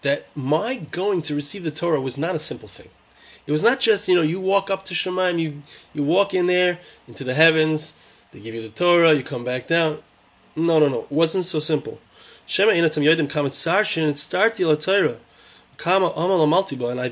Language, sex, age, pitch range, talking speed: English, male, 30-49, 135-170 Hz, 195 wpm